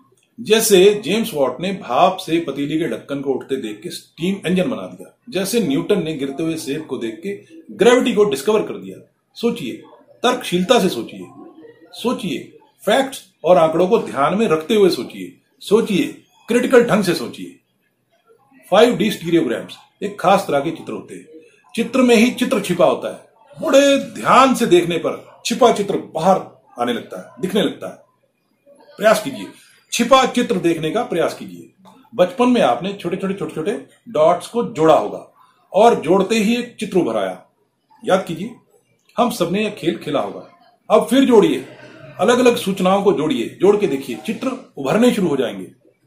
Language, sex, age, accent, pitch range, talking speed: Hindi, male, 50-69, native, 180-245 Hz, 135 wpm